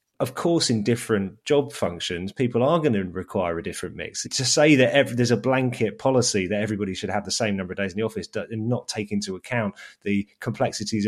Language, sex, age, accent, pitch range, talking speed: English, male, 30-49, British, 100-120 Hz, 215 wpm